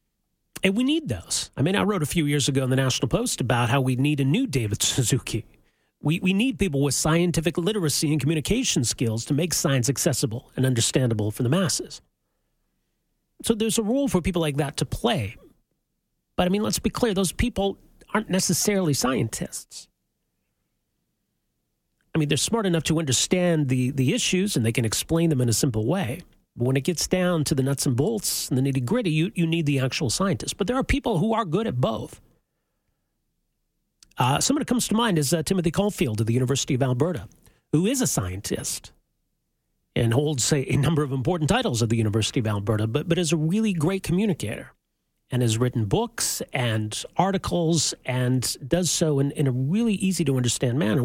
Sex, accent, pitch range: male, American, 130-180 Hz